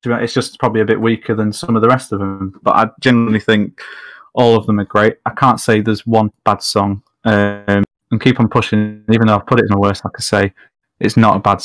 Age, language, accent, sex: 20-39, English, British, male